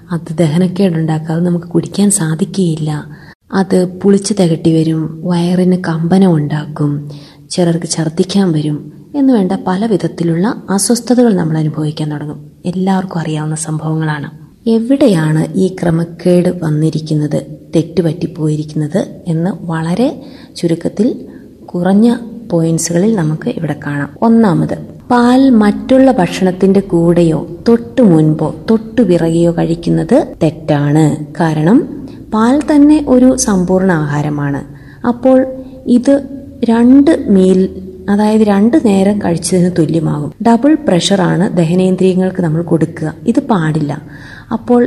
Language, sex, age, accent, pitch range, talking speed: Malayalam, female, 20-39, native, 160-215 Hz, 95 wpm